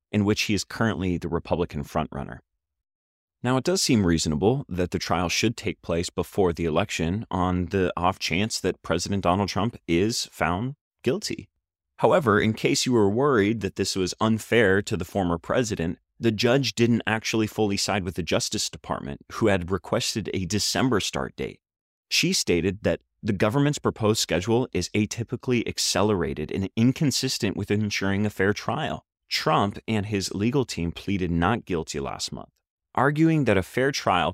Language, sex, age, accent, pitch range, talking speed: English, male, 30-49, American, 90-125 Hz, 170 wpm